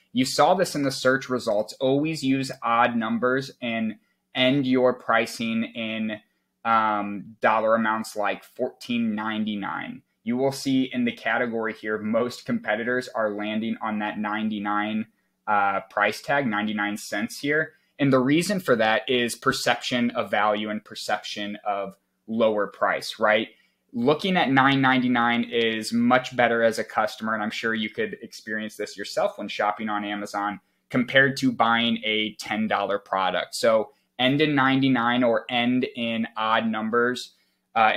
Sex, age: male, 20-39